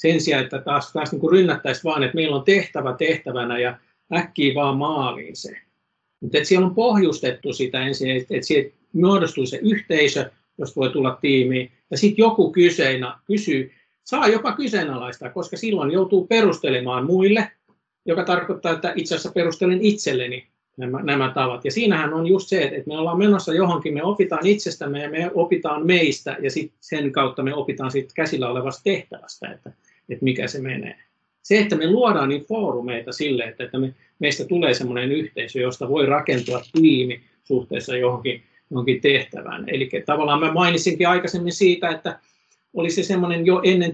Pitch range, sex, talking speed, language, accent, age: 135-185 Hz, male, 165 wpm, Finnish, native, 50-69